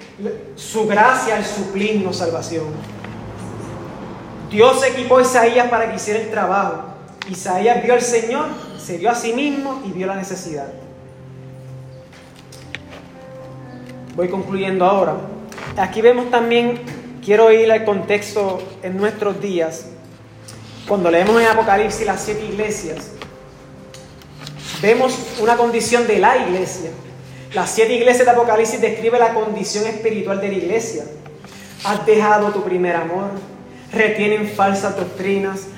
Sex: male